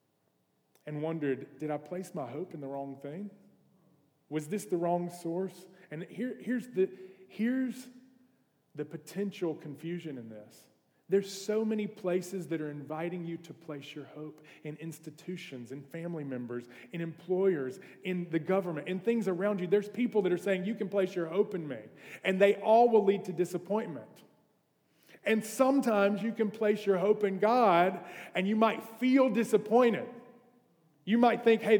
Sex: male